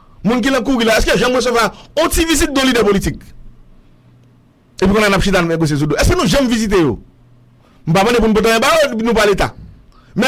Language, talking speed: English, 160 wpm